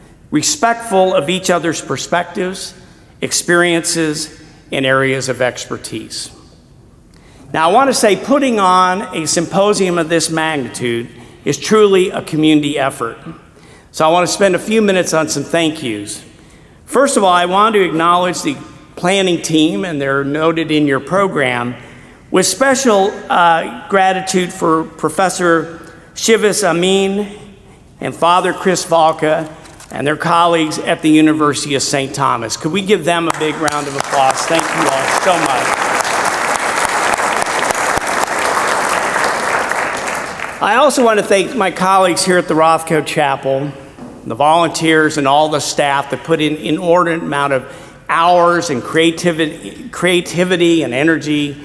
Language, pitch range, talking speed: English, 150-185 Hz, 140 wpm